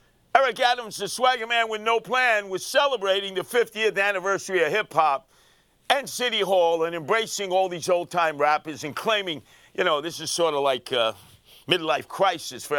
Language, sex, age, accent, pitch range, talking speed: English, male, 50-69, American, 175-245 Hz, 175 wpm